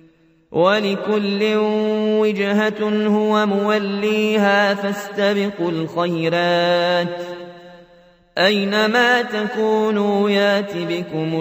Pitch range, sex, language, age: 165-205 Hz, male, Arabic, 30-49